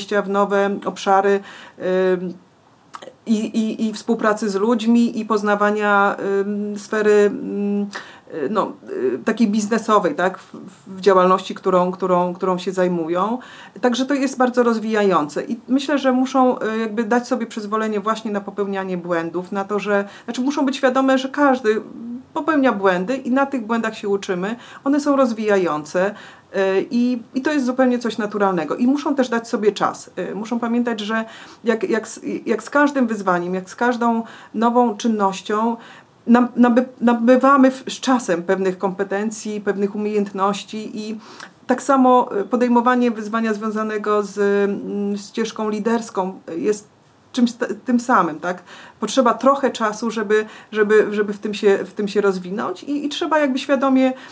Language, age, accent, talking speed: Polish, 40-59, native, 140 wpm